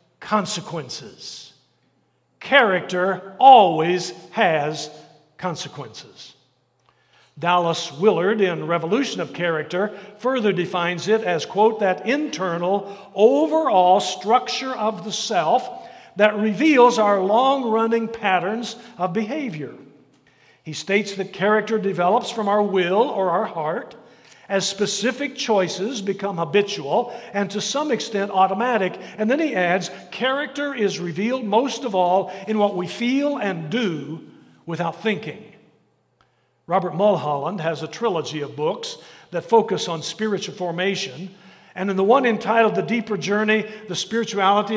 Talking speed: 120 wpm